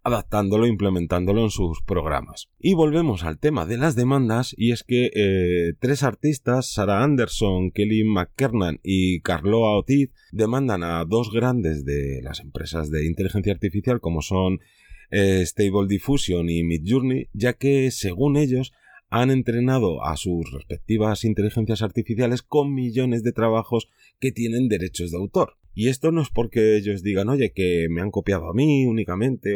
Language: Spanish